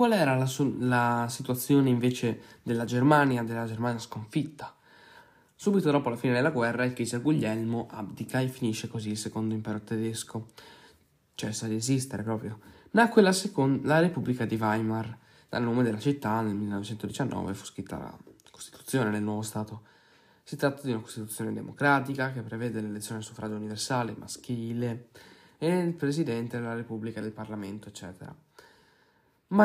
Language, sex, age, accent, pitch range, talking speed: Italian, male, 10-29, native, 110-135 Hz, 150 wpm